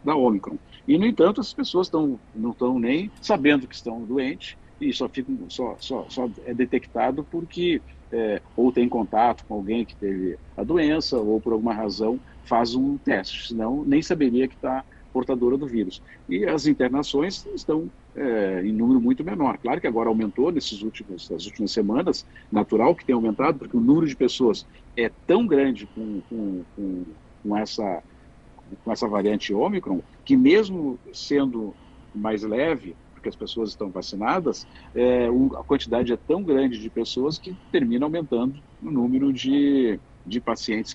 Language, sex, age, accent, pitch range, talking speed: Portuguese, male, 50-69, Brazilian, 115-170 Hz, 160 wpm